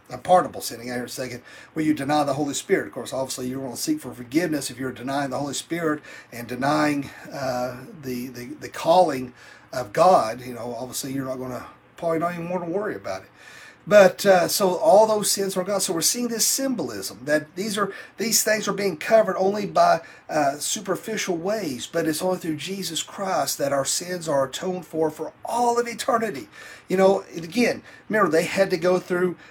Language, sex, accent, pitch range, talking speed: English, male, American, 150-195 Hz, 210 wpm